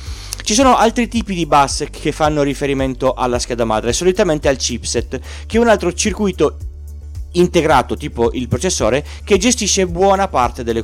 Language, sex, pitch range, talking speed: Italian, male, 105-165 Hz, 160 wpm